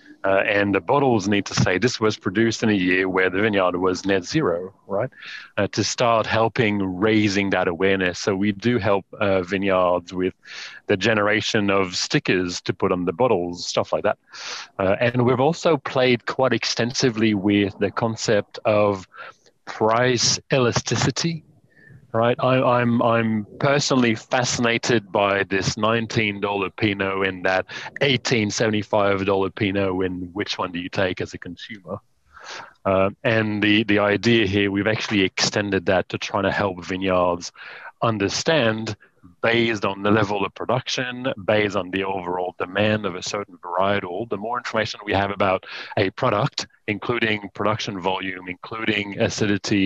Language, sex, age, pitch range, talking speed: English, male, 30-49, 95-115 Hz, 155 wpm